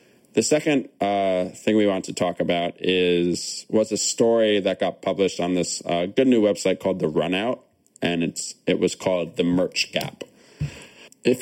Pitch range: 85-105 Hz